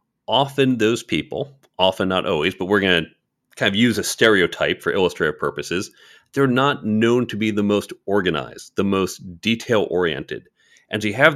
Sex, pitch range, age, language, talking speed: male, 95-135 Hz, 40-59, English, 175 wpm